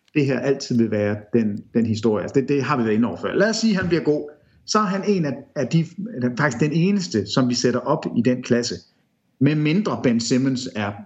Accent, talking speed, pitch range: Danish, 245 wpm, 115-155 Hz